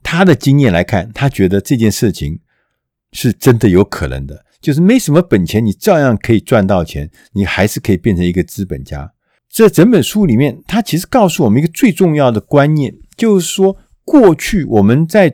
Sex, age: male, 50-69